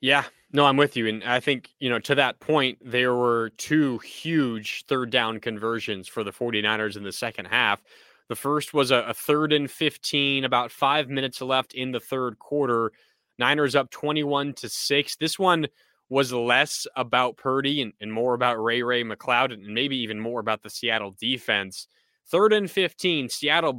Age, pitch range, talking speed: 20-39, 120-145 Hz, 185 wpm